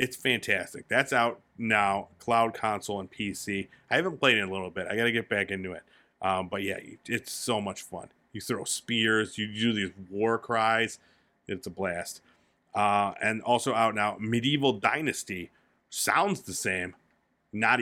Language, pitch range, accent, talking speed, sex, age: English, 100-130 Hz, American, 180 wpm, male, 30-49